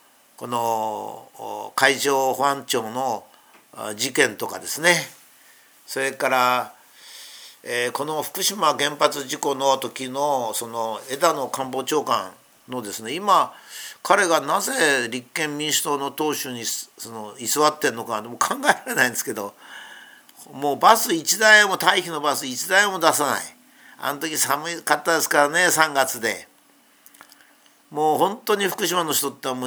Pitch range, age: 130-175 Hz, 50-69